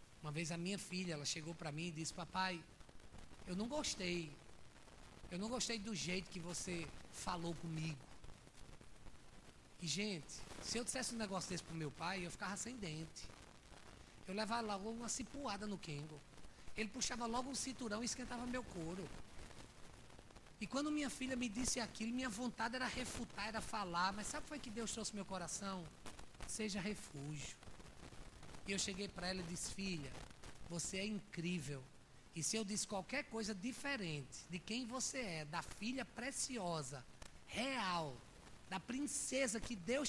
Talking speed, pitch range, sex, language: 165 wpm, 170-240 Hz, male, Portuguese